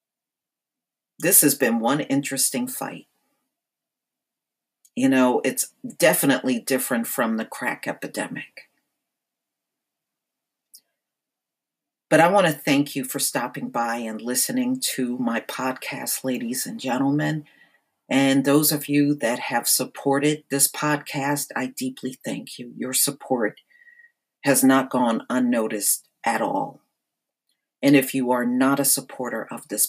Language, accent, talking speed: English, American, 125 wpm